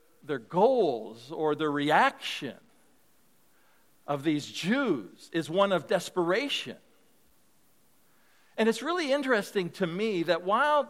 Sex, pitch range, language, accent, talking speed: male, 170-240 Hz, Russian, American, 110 wpm